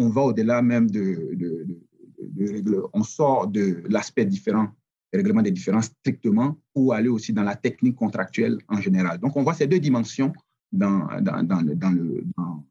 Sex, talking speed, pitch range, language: male, 190 wpm, 110-145 Hz, French